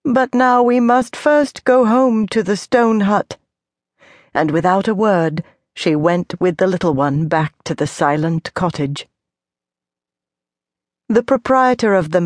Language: English